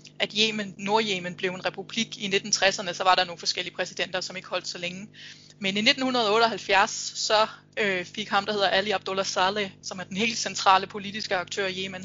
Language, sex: Danish, female